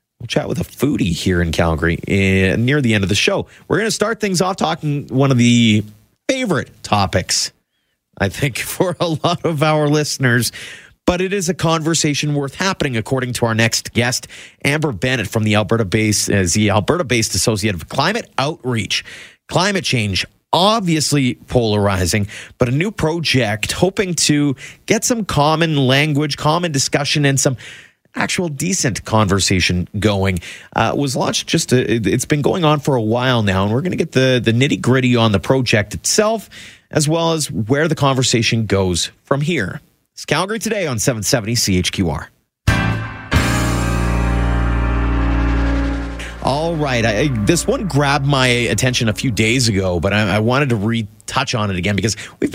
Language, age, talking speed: English, 30-49, 165 wpm